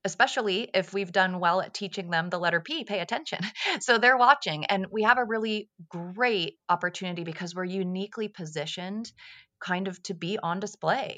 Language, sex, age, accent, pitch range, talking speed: English, female, 30-49, American, 160-200 Hz, 175 wpm